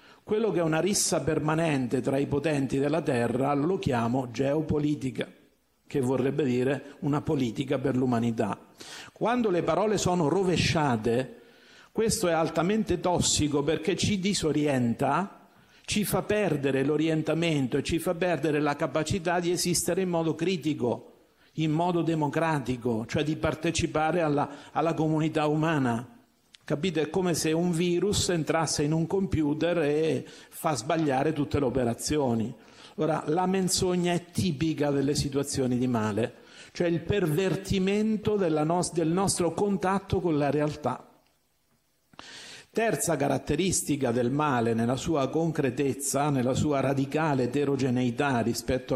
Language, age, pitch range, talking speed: Italian, 50-69, 135-170 Hz, 130 wpm